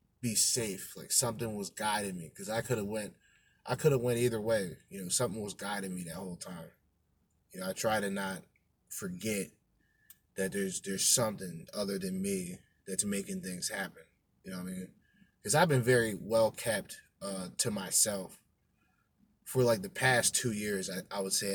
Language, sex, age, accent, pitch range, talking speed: English, male, 20-39, American, 100-135 Hz, 190 wpm